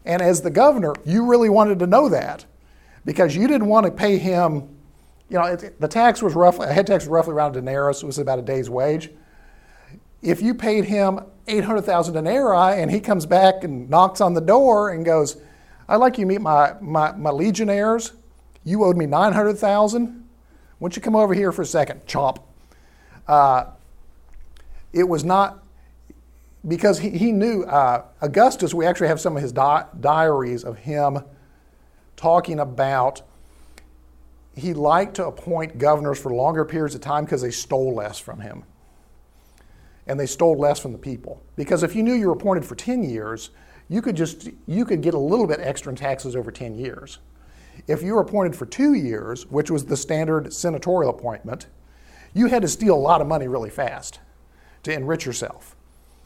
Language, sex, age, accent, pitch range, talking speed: English, male, 50-69, American, 125-195 Hz, 185 wpm